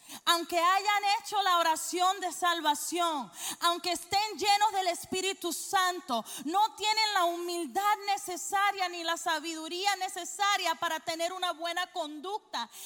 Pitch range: 300-370 Hz